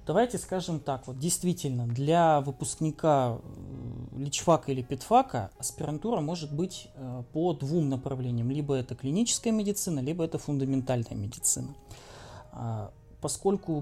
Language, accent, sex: Russian, native, male